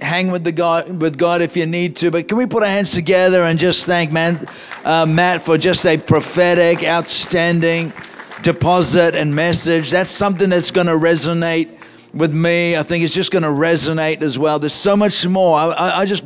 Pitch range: 150-180 Hz